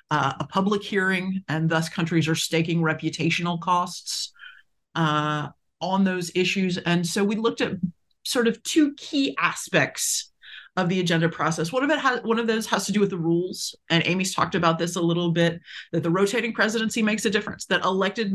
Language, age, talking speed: English, 30-49, 185 wpm